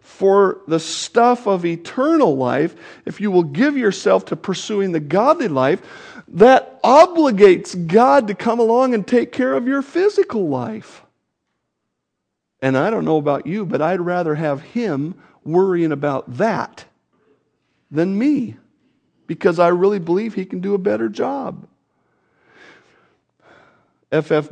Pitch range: 150-230 Hz